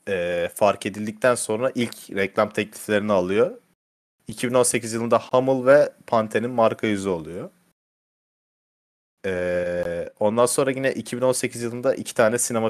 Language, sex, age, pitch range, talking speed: Turkish, male, 30-49, 95-125 Hz, 120 wpm